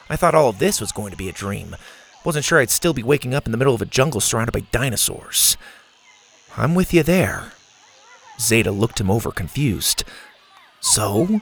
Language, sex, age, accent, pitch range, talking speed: English, male, 30-49, American, 105-165 Hz, 195 wpm